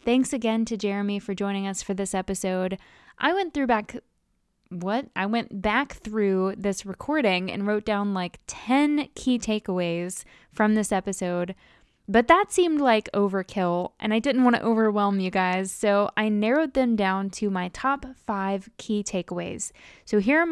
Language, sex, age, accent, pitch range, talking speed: English, female, 10-29, American, 195-255 Hz, 170 wpm